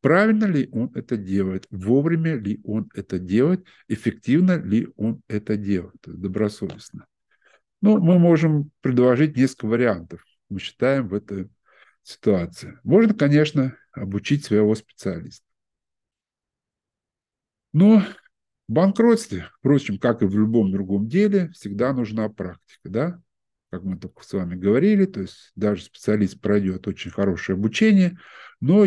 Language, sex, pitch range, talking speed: Russian, male, 100-145 Hz, 125 wpm